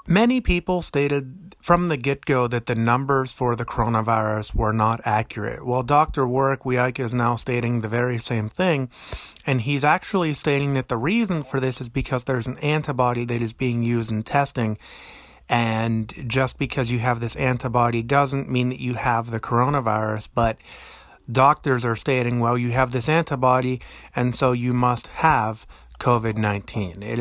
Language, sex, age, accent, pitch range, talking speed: English, male, 30-49, American, 115-145 Hz, 170 wpm